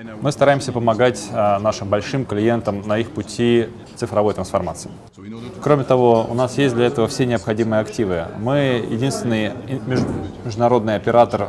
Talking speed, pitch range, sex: 130 wpm, 100-120 Hz, male